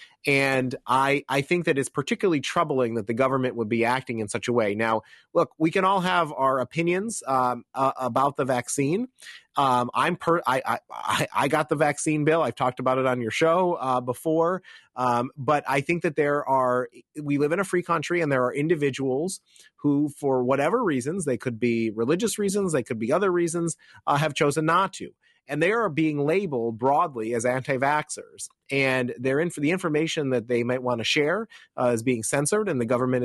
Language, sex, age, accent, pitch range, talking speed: English, male, 30-49, American, 125-170 Hz, 205 wpm